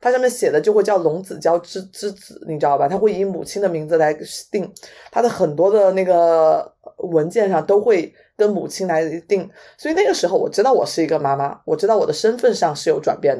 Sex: female